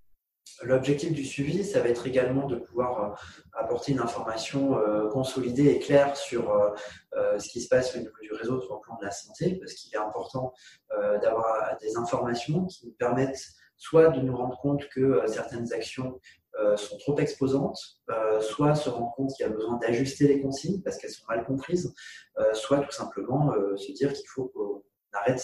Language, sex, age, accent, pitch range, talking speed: French, male, 20-39, French, 120-150 Hz, 180 wpm